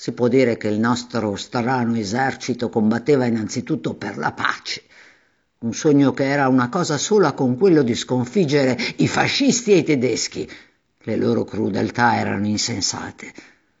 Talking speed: 150 wpm